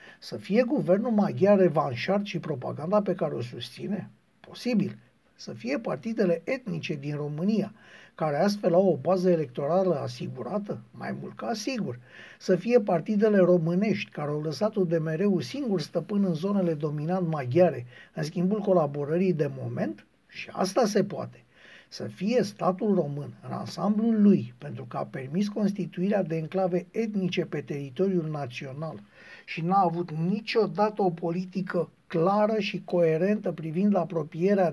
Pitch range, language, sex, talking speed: 165-205 Hz, Romanian, male, 140 wpm